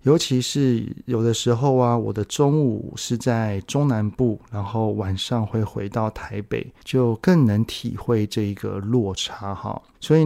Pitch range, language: 110-130 Hz, Chinese